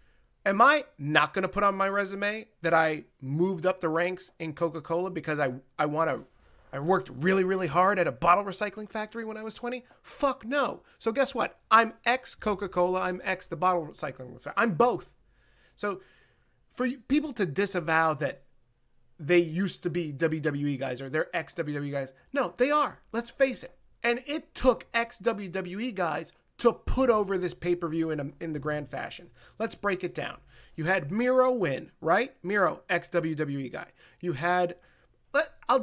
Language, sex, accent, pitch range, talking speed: English, male, American, 160-220 Hz, 180 wpm